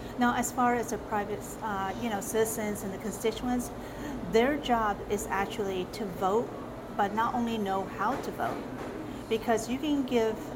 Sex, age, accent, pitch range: female, 40-59, American, 195-230 Hz